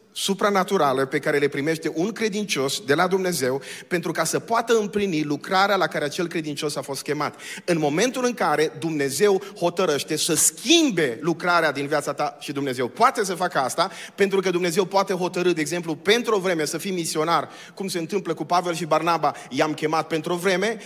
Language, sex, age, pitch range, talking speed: Romanian, male, 30-49, 175-235 Hz, 190 wpm